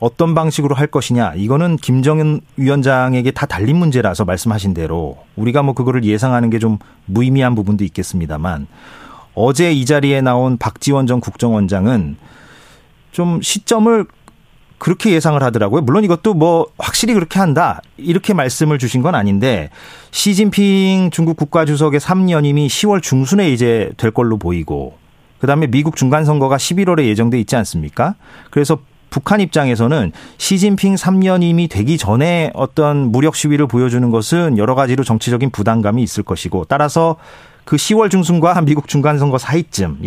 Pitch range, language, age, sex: 120-165 Hz, Korean, 40-59, male